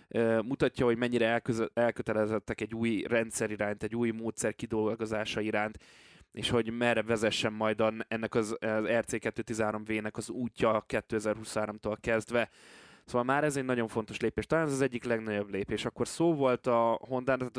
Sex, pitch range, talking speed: male, 110-120 Hz, 155 wpm